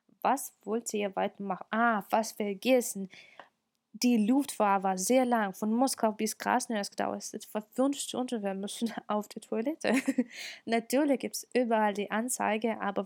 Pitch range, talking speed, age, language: 205-250 Hz, 160 wpm, 20-39, Russian